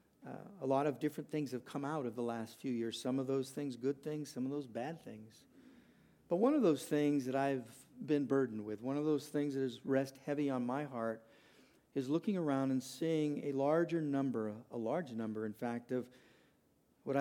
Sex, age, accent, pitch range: male, 50-69, American, 125-150 Hz